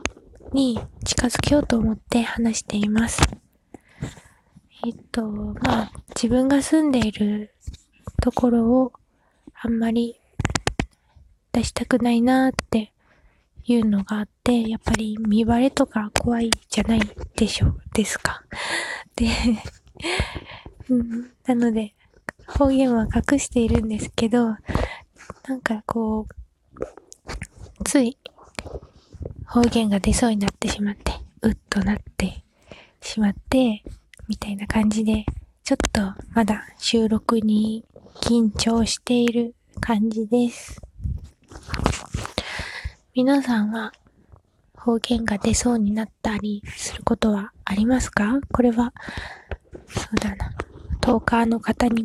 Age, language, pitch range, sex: 20-39, Japanese, 215-245 Hz, female